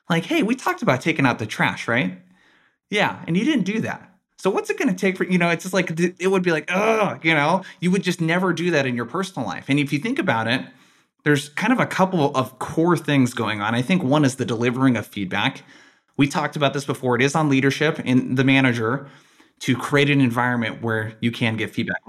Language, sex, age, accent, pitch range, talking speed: English, male, 20-39, American, 115-155 Hz, 240 wpm